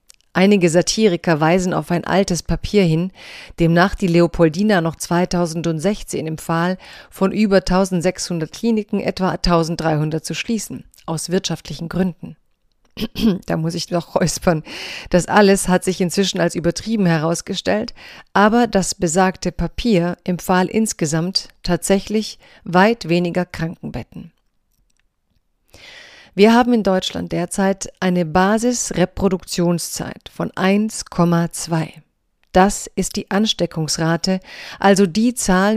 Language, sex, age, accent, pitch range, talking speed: German, female, 40-59, German, 170-205 Hz, 105 wpm